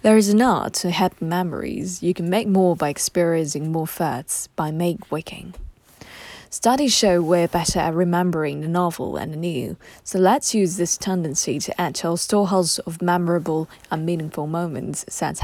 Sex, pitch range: female, 165-195 Hz